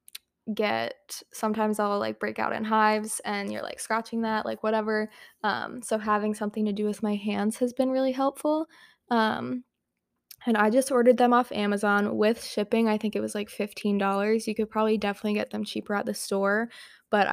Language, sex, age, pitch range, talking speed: English, female, 20-39, 200-220 Hz, 190 wpm